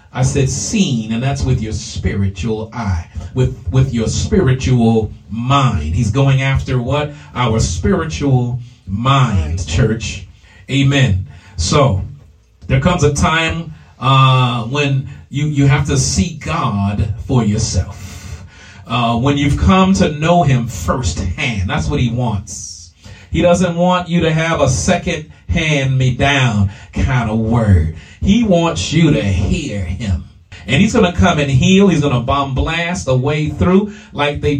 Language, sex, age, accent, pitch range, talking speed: English, male, 40-59, American, 105-160 Hz, 145 wpm